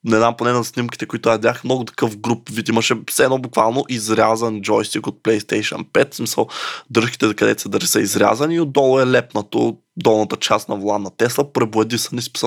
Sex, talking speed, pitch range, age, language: male, 180 wpm, 105-125 Hz, 20-39, Bulgarian